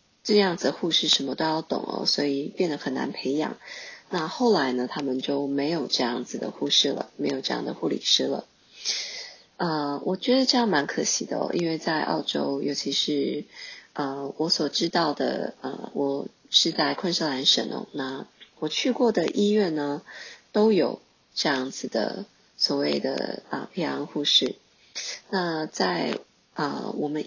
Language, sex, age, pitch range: Chinese, female, 20-39, 145-205 Hz